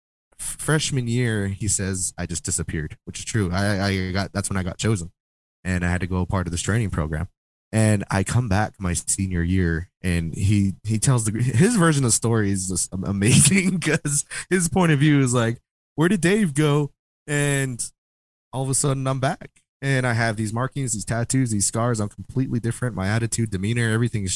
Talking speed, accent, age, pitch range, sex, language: 205 wpm, American, 20-39, 90-115 Hz, male, English